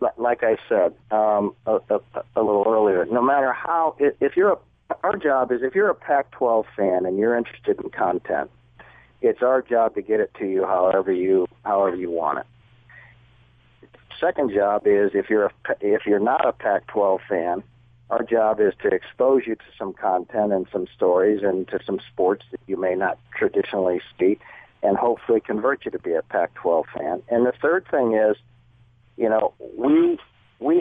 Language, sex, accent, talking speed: English, male, American, 185 wpm